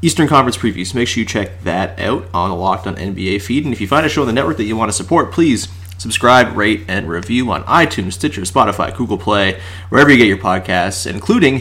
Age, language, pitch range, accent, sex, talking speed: 30-49, English, 95-135 Hz, American, male, 240 wpm